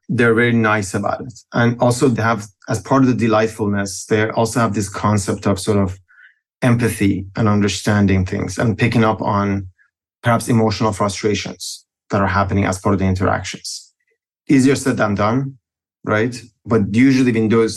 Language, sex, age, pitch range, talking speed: English, male, 30-49, 100-115 Hz, 170 wpm